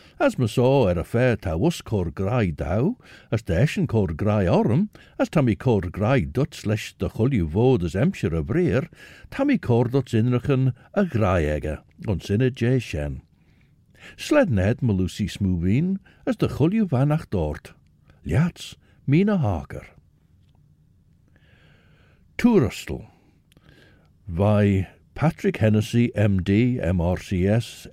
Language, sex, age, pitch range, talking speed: English, male, 60-79, 95-140 Hz, 115 wpm